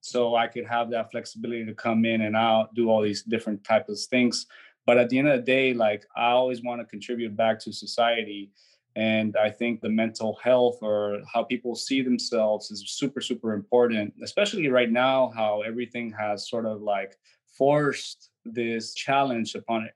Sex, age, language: male, 20-39, English